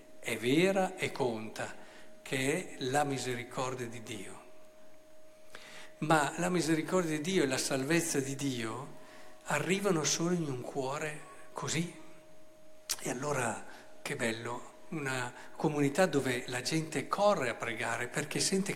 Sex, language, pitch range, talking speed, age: male, Italian, 140-190 Hz, 130 wpm, 50-69